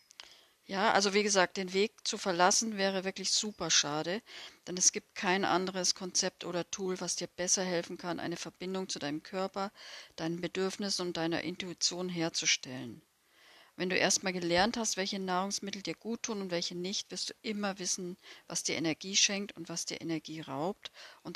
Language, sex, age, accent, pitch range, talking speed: German, female, 40-59, German, 170-200 Hz, 175 wpm